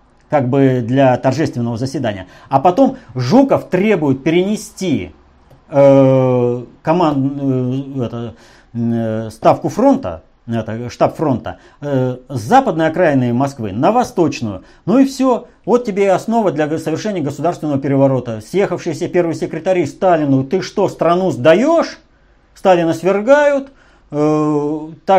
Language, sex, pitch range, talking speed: Russian, male, 130-205 Hz, 115 wpm